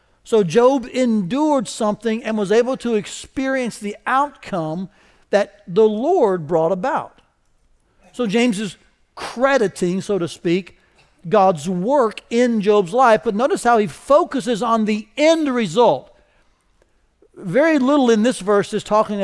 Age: 60-79